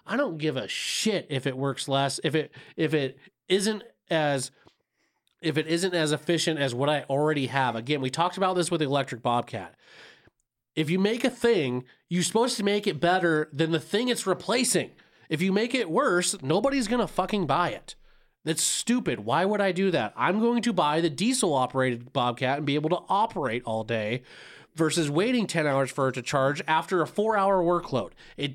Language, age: English, 30-49